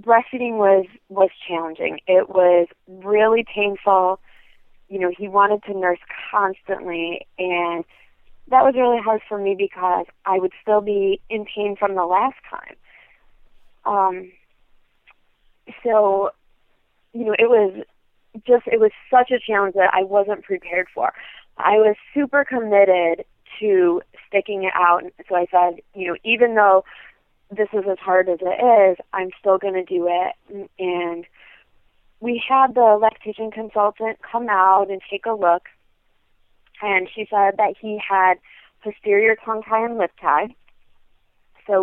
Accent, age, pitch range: American, 30-49, 185-220 Hz